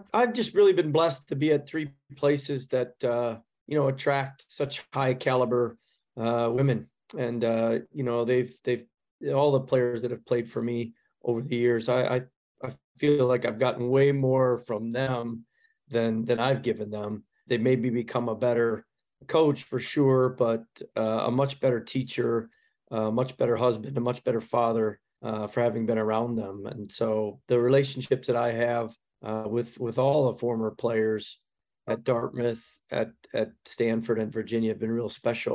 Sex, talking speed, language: male, 180 wpm, English